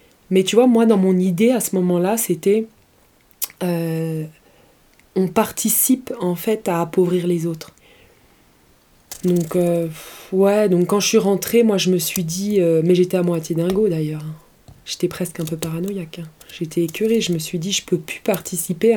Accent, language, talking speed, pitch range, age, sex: French, French, 180 wpm, 165-195 Hz, 20-39, female